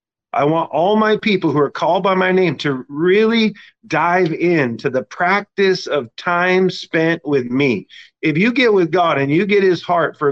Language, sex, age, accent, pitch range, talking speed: English, male, 40-59, American, 140-190 Hz, 190 wpm